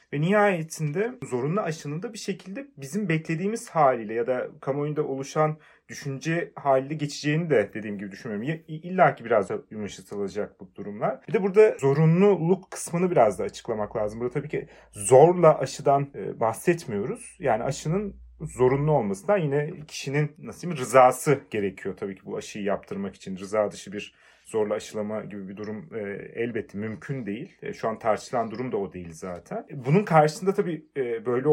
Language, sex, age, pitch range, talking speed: Turkish, male, 40-59, 135-190 Hz, 165 wpm